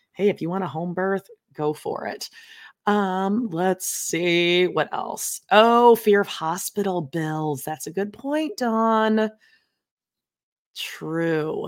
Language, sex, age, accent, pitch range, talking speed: English, female, 30-49, American, 160-215 Hz, 135 wpm